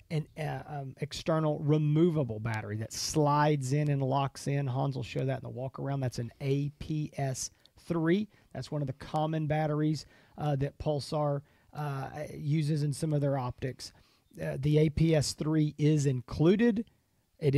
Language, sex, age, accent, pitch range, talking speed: English, male, 40-59, American, 135-160 Hz, 155 wpm